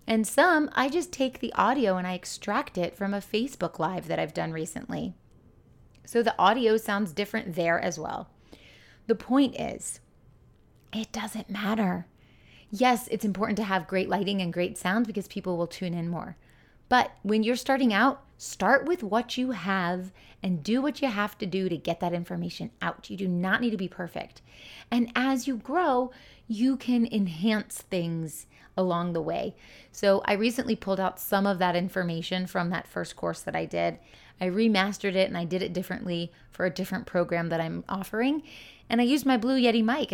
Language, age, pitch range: English, 30-49, 180-230 Hz